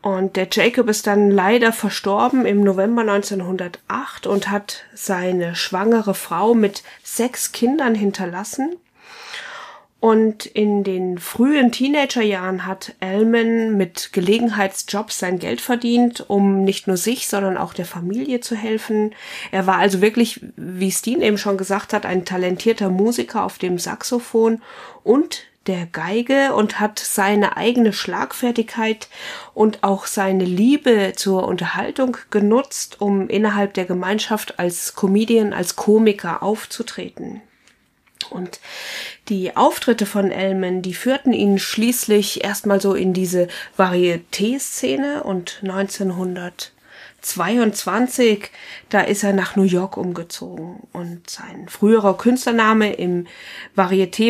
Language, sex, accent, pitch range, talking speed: German, female, German, 190-230 Hz, 125 wpm